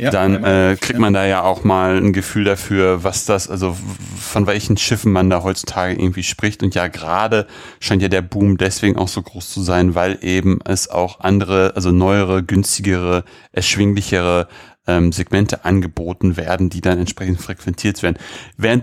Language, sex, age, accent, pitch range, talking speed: German, male, 30-49, German, 90-110 Hz, 170 wpm